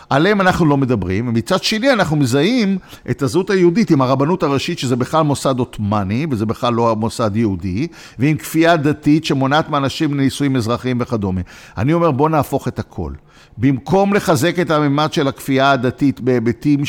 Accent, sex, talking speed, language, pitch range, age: native, male, 160 wpm, Hebrew, 125-180 Hz, 50-69